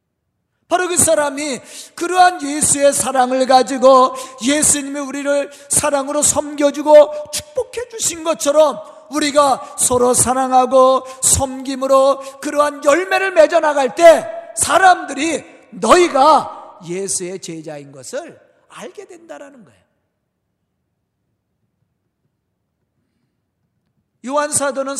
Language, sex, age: Korean, male, 40-59